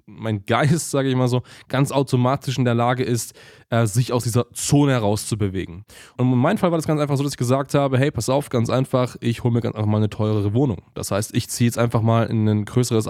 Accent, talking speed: German, 245 wpm